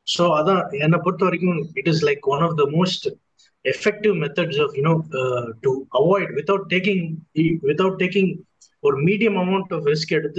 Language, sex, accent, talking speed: Tamil, male, native, 175 wpm